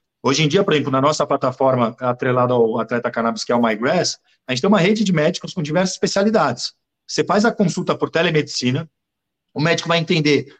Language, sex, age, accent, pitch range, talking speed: Portuguese, male, 50-69, Brazilian, 140-185 Hz, 205 wpm